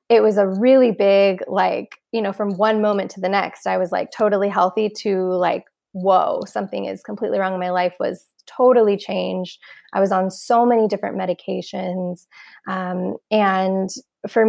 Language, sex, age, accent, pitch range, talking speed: English, female, 20-39, American, 185-215 Hz, 170 wpm